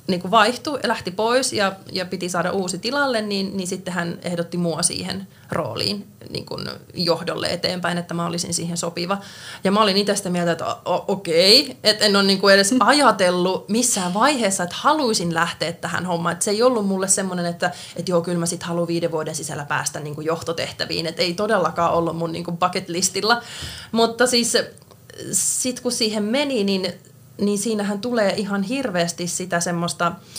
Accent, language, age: native, Finnish, 20-39